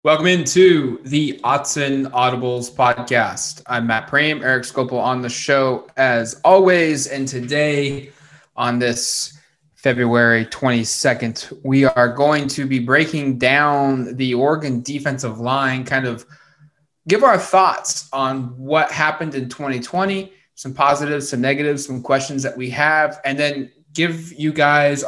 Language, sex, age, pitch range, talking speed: English, male, 20-39, 125-150 Hz, 135 wpm